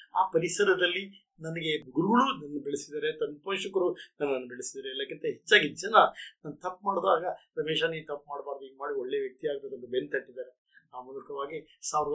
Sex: male